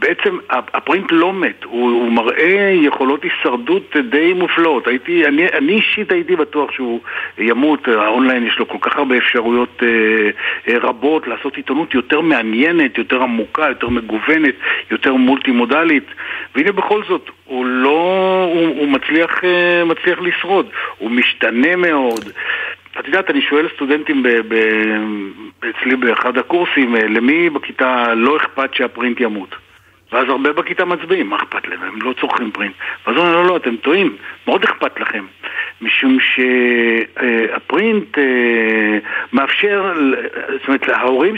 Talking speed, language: 135 wpm, Hebrew